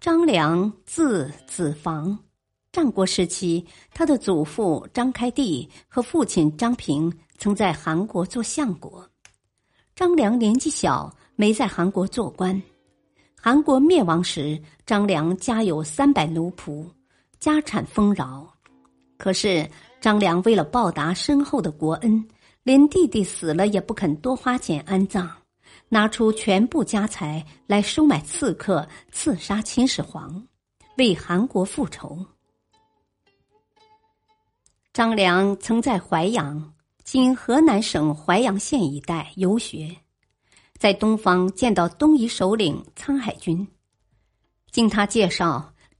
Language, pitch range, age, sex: Chinese, 165-245 Hz, 50-69, male